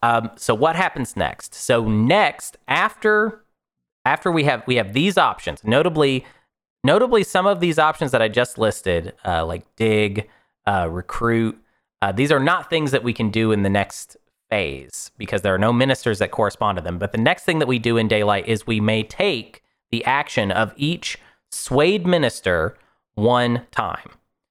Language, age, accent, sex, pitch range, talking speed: English, 30-49, American, male, 105-140 Hz, 180 wpm